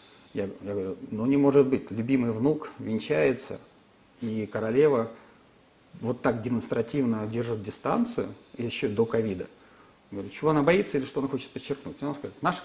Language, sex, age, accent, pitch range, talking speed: Russian, male, 40-59, native, 115-160 Hz, 145 wpm